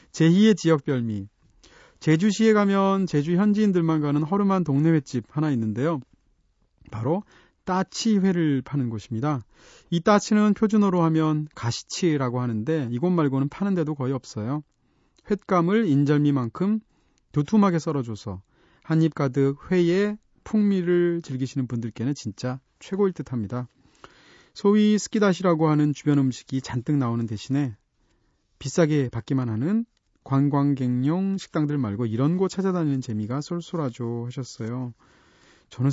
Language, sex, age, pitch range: Korean, male, 30-49, 125-175 Hz